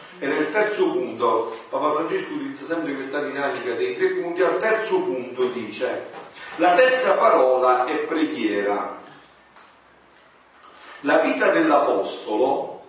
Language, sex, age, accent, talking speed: Italian, male, 40-59, native, 115 wpm